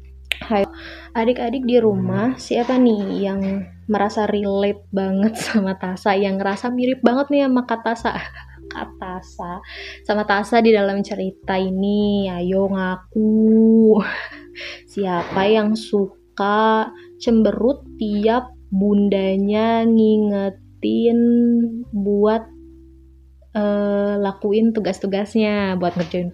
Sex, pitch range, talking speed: female, 185-225 Hz, 95 wpm